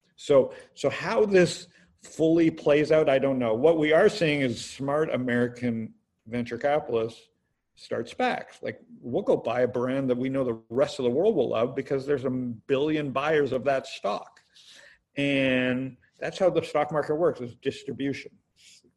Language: English